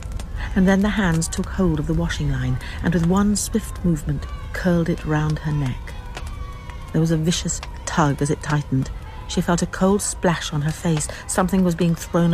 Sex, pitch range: female, 150-185 Hz